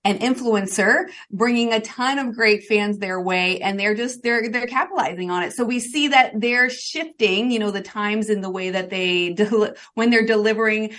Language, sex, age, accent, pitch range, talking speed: English, female, 30-49, American, 200-255 Hz, 200 wpm